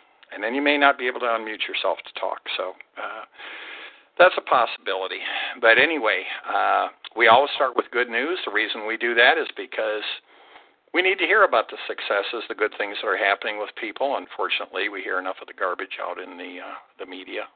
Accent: American